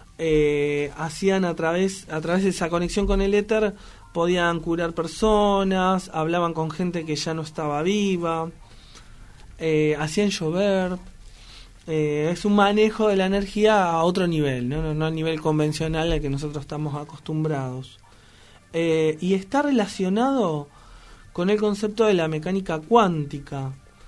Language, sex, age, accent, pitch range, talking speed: Spanish, male, 20-39, Argentinian, 150-205 Hz, 145 wpm